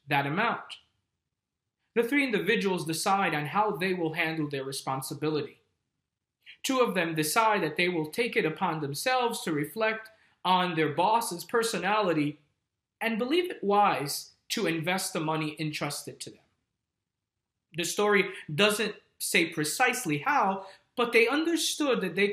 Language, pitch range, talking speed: English, 155-210 Hz, 140 wpm